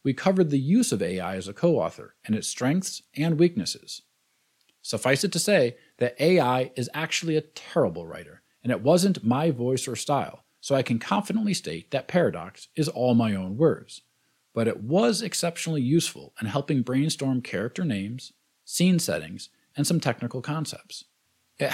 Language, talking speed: English, 170 wpm